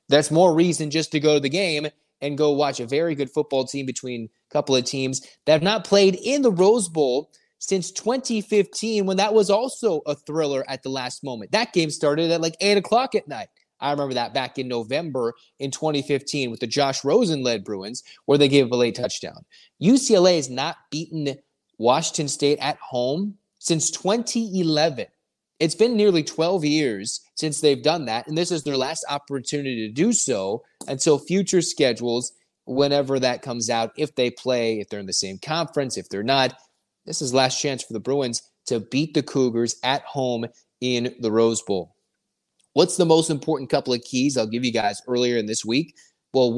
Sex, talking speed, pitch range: male, 195 wpm, 125-165 Hz